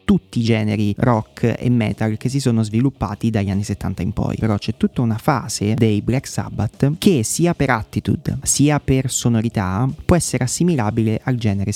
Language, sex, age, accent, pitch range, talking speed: Italian, male, 30-49, native, 105-135 Hz, 180 wpm